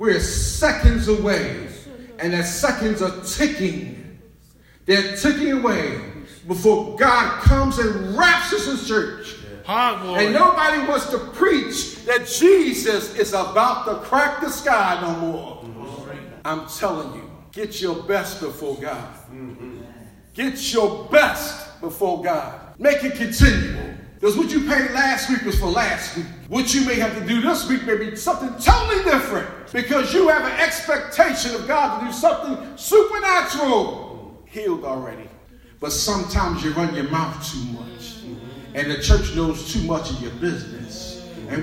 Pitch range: 170-275 Hz